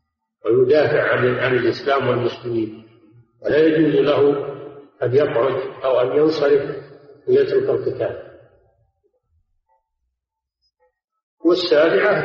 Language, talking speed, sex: Arabic, 75 wpm, male